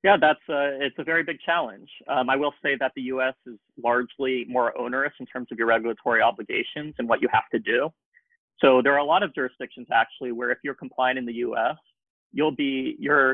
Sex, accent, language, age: male, American, English, 30-49